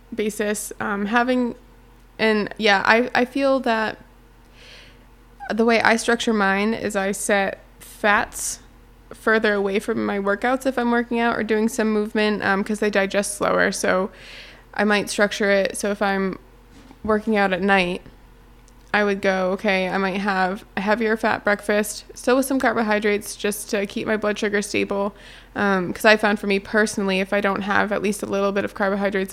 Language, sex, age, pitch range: English, female, 20-39, 195-215 Hz